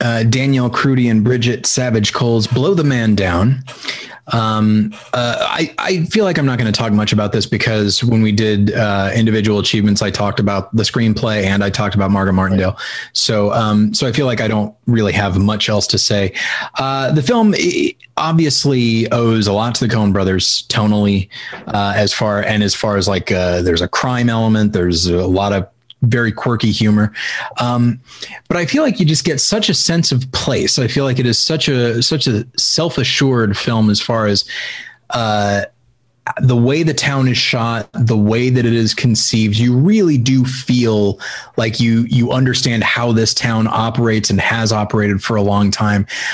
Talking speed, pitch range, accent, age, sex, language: 190 wpm, 105-130 Hz, American, 30-49, male, English